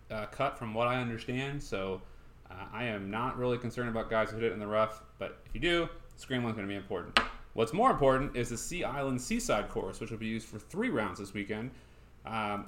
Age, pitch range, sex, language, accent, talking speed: 30-49, 110-145 Hz, male, English, American, 235 wpm